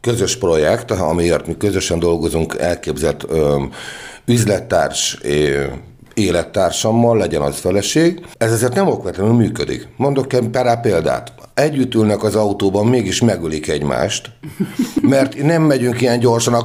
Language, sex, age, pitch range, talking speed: Hungarian, male, 60-79, 95-150 Hz, 125 wpm